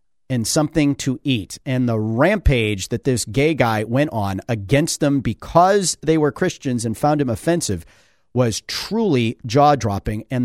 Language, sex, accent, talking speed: English, male, American, 160 wpm